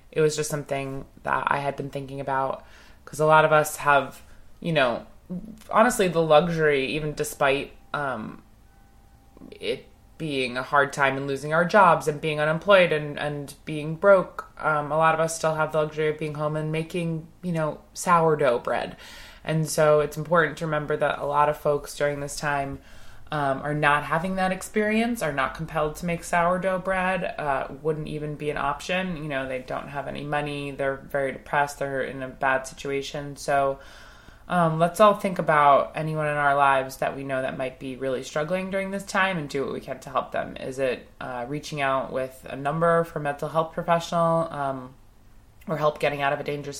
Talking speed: 200 wpm